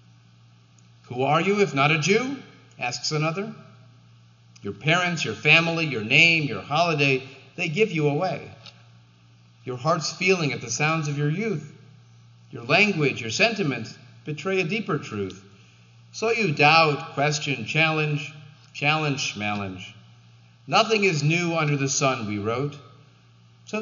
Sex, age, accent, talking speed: male, 40-59, American, 135 wpm